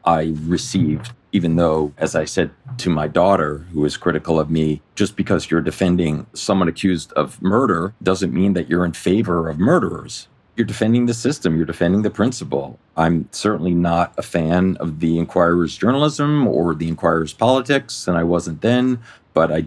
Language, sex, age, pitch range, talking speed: English, male, 40-59, 80-100 Hz, 175 wpm